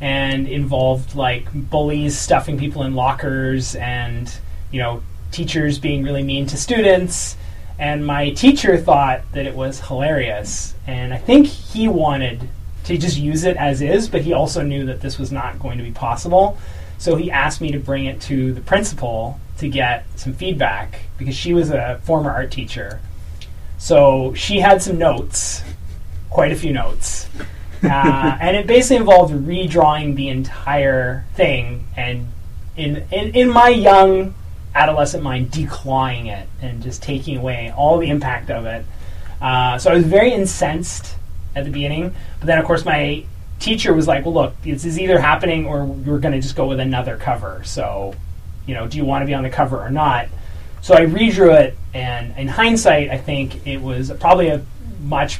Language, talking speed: English, 180 wpm